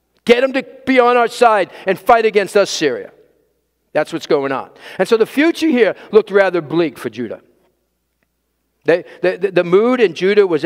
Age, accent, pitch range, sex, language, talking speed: 50-69, American, 190-290 Hz, male, English, 175 wpm